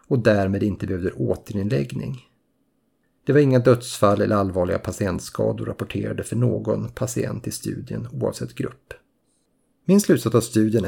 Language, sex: Swedish, male